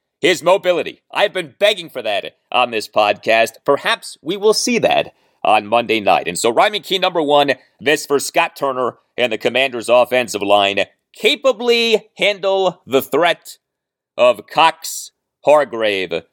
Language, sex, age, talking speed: English, male, 40-59, 145 wpm